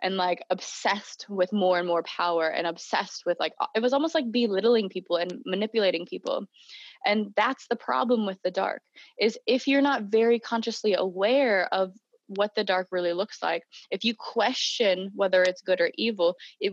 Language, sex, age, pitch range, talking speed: English, female, 20-39, 185-245 Hz, 185 wpm